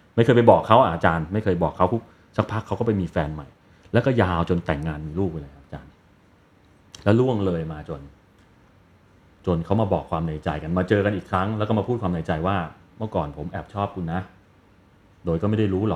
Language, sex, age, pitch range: Thai, male, 30-49, 90-110 Hz